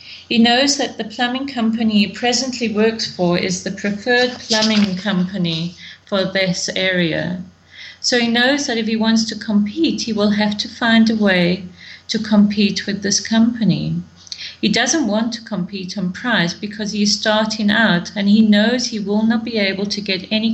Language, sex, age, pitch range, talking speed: English, female, 40-59, 185-225 Hz, 180 wpm